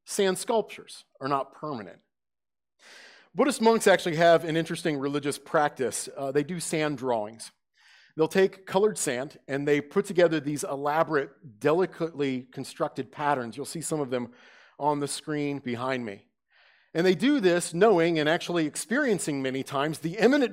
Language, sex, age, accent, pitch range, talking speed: English, male, 40-59, American, 140-195 Hz, 155 wpm